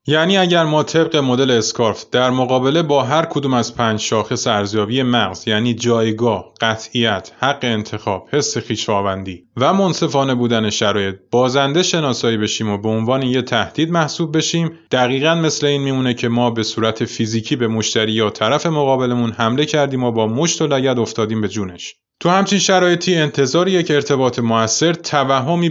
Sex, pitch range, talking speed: male, 115-150 Hz, 160 wpm